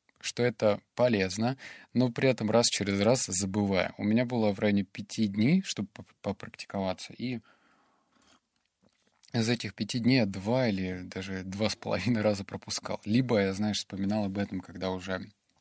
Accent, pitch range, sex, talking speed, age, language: native, 100-120 Hz, male, 160 wpm, 20-39, Russian